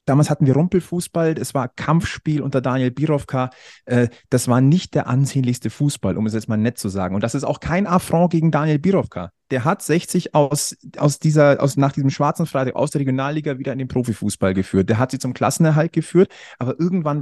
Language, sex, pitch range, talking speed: German, male, 125-160 Hz, 210 wpm